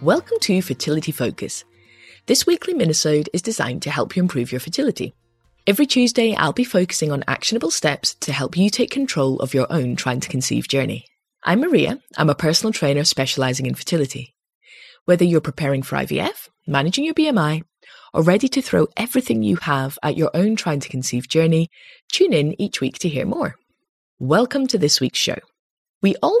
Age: 20-39